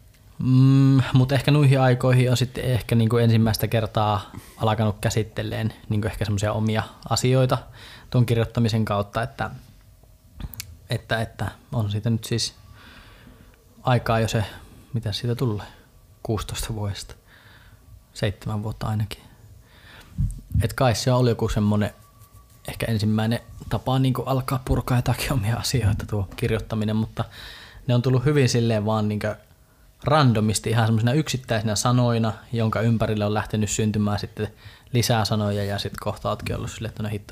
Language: Finnish